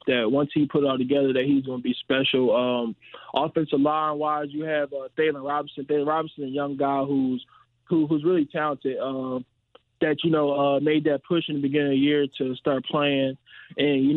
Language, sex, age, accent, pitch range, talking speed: English, male, 20-39, American, 130-150 Hz, 215 wpm